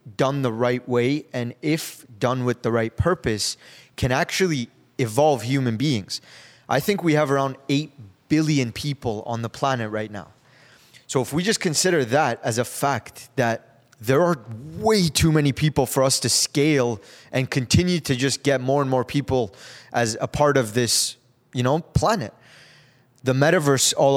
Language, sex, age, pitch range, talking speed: English, male, 20-39, 120-145 Hz, 170 wpm